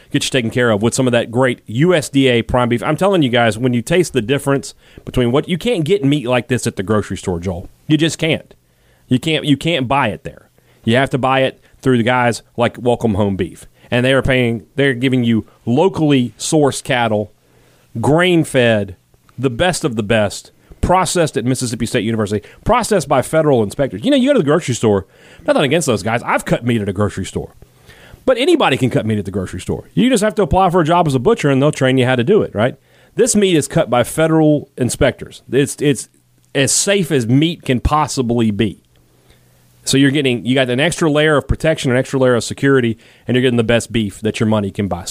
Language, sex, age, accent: English, male, 30-49, American